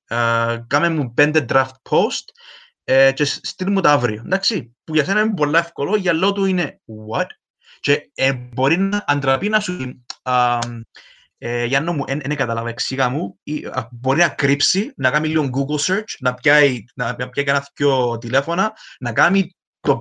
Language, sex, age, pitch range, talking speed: Greek, male, 20-39, 125-165 Hz, 170 wpm